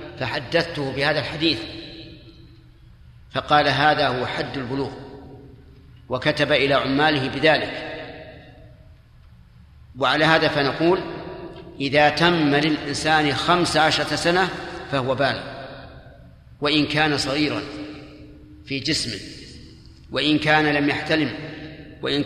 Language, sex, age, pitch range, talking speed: Arabic, male, 50-69, 140-160 Hz, 90 wpm